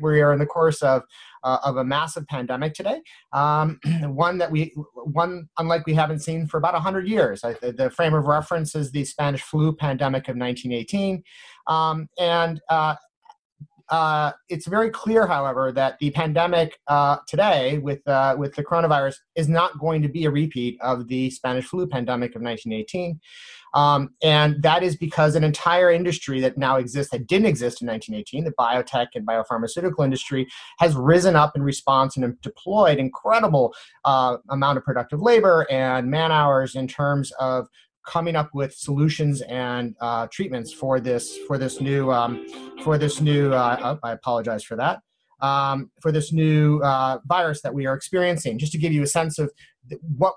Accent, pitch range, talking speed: American, 135-165 Hz, 180 wpm